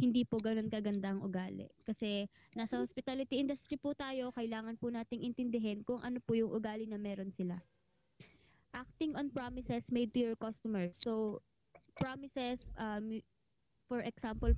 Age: 20-39